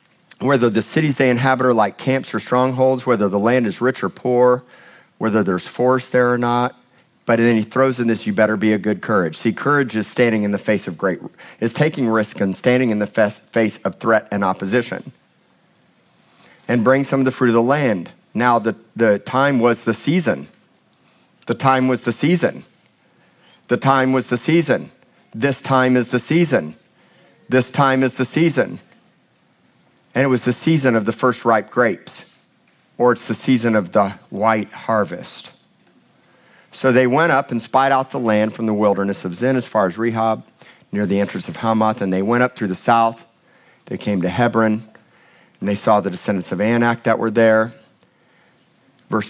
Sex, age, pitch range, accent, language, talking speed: male, 50-69, 110-130 Hz, American, English, 190 wpm